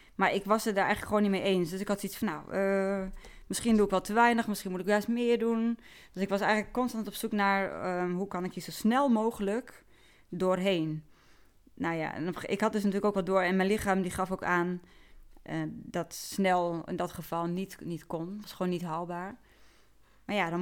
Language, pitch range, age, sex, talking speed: Dutch, 175-205 Hz, 20-39, female, 235 wpm